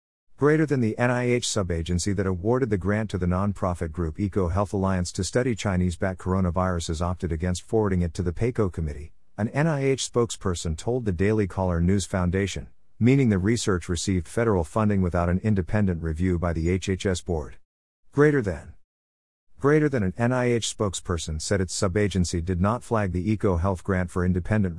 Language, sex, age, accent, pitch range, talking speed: English, male, 50-69, American, 90-110 Hz, 165 wpm